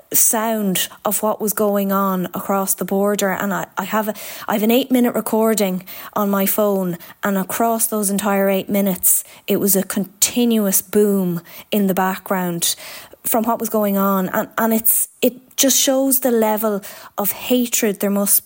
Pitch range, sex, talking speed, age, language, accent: 195-230 Hz, female, 175 wpm, 20-39, English, Irish